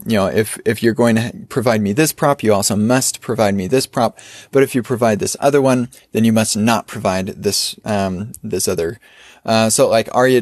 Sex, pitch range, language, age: male, 110-140 Hz, English, 20-39